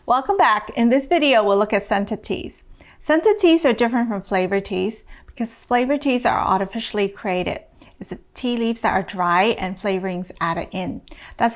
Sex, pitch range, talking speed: female, 195-240 Hz, 180 wpm